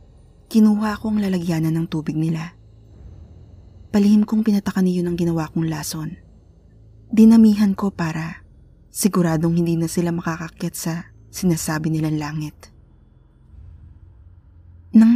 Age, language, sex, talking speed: 20-39, Filipino, female, 110 wpm